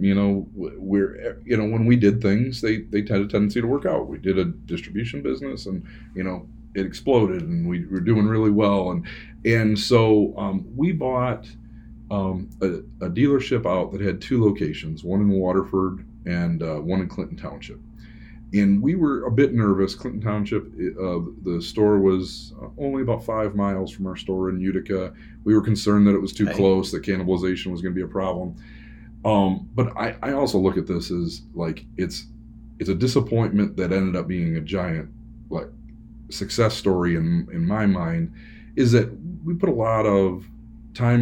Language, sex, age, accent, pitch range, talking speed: English, male, 40-59, American, 95-110 Hz, 185 wpm